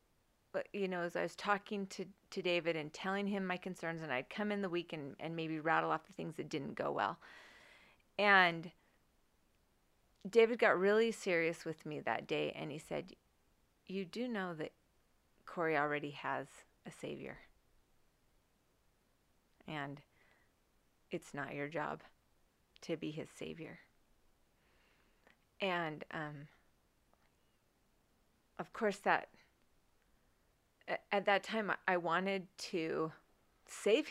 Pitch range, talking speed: 160-205 Hz, 130 wpm